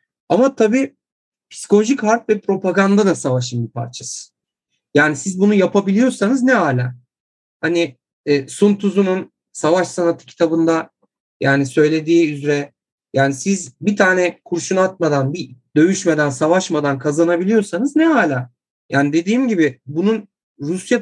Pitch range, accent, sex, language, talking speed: 160-225 Hz, native, male, Turkish, 125 wpm